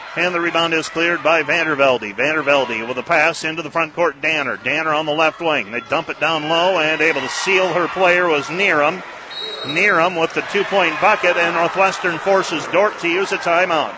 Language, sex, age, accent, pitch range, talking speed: English, male, 40-59, American, 145-175 Hz, 210 wpm